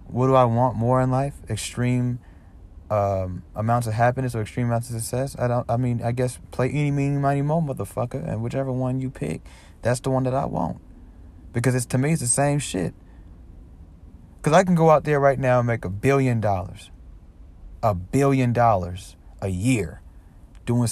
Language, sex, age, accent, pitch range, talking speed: English, male, 30-49, American, 95-130 Hz, 190 wpm